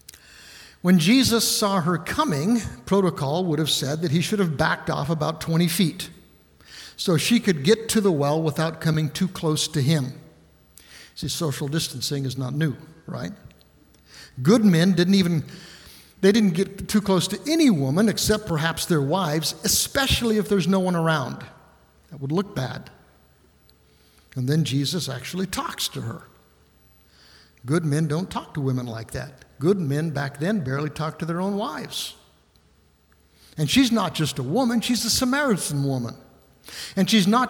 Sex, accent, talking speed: male, American, 165 wpm